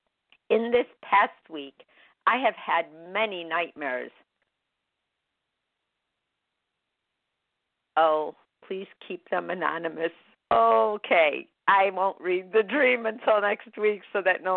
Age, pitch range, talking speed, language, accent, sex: 50-69, 165-210 Hz, 105 wpm, English, American, female